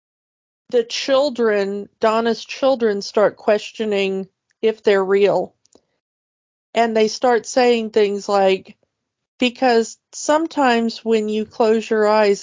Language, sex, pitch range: English, female, 195-230 Hz